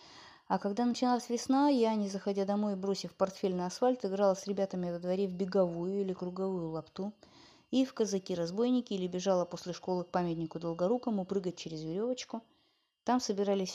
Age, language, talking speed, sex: 20-39, Russian, 160 wpm, female